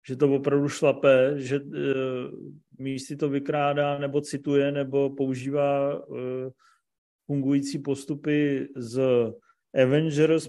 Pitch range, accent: 125-145 Hz, native